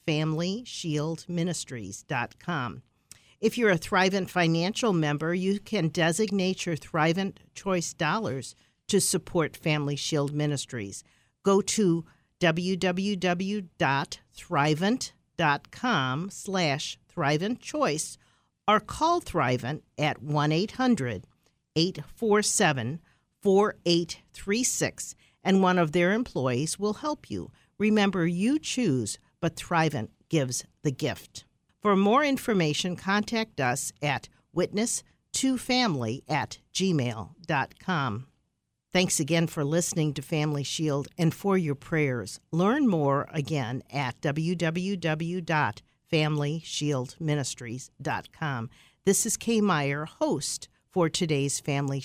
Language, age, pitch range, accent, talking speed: English, 50-69, 145-195 Hz, American, 95 wpm